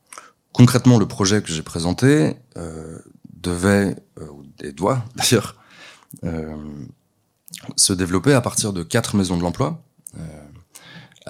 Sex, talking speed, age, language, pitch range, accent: male, 120 wpm, 20-39, French, 85-125 Hz, French